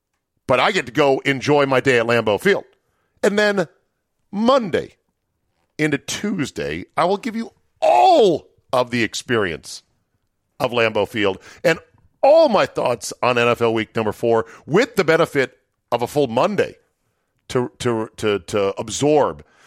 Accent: American